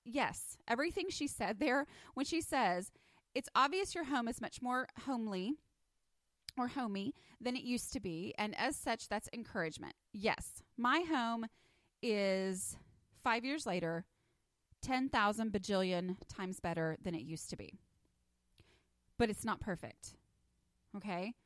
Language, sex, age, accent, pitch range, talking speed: English, female, 30-49, American, 185-250 Hz, 135 wpm